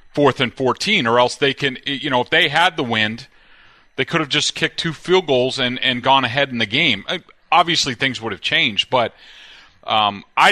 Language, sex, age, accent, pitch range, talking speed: English, male, 30-49, American, 115-140 Hz, 215 wpm